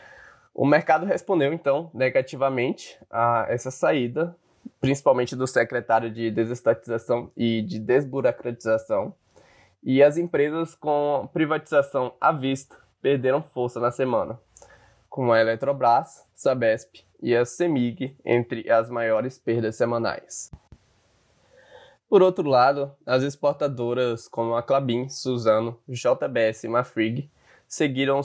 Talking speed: 110 wpm